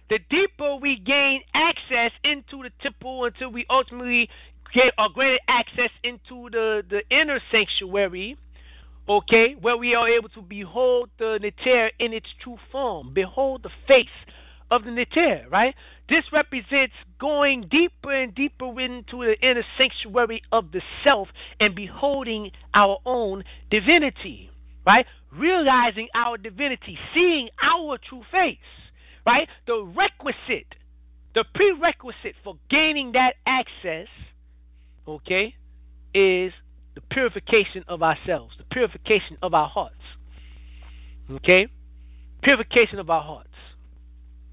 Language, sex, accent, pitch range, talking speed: English, male, American, 160-255 Hz, 125 wpm